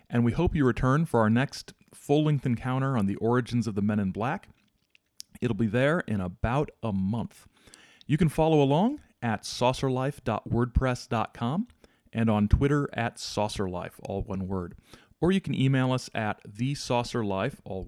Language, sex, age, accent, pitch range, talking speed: English, male, 40-59, American, 100-125 Hz, 160 wpm